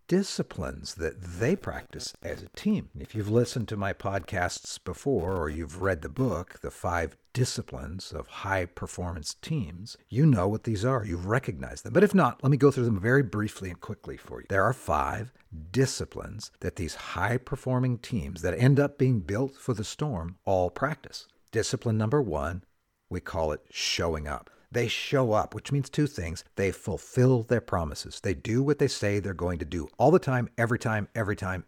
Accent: American